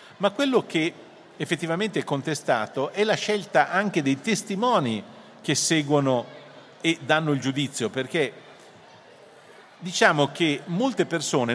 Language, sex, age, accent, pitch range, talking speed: Italian, male, 50-69, native, 125-175 Hz, 120 wpm